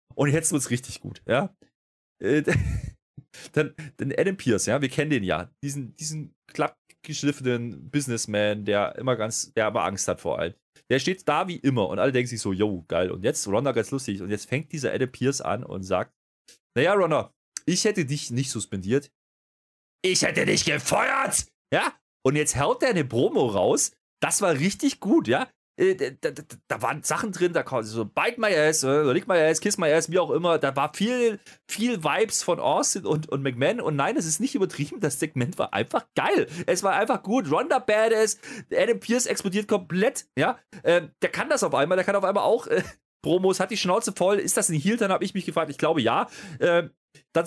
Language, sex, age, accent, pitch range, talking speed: German, male, 30-49, German, 135-200 Hz, 210 wpm